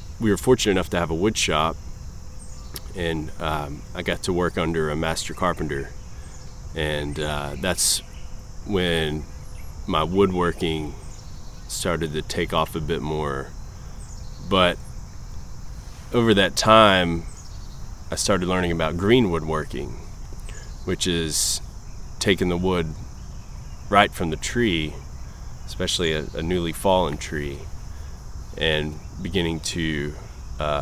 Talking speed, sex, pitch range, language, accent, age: 120 wpm, male, 75-95 Hz, English, American, 20-39